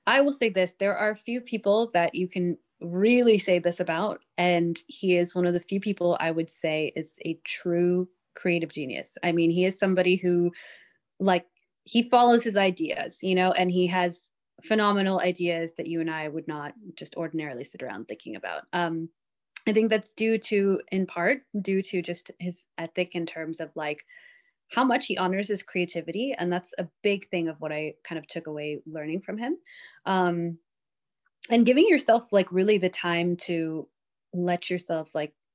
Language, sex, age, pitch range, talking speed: English, female, 20-39, 165-205 Hz, 190 wpm